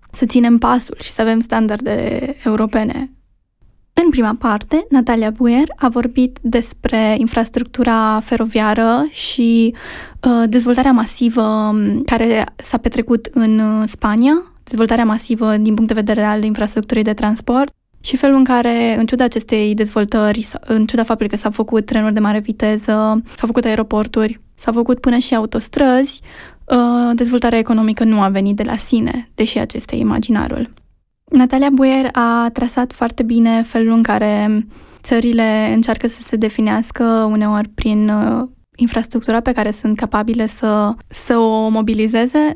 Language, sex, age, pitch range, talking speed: Romanian, female, 10-29, 215-245 Hz, 140 wpm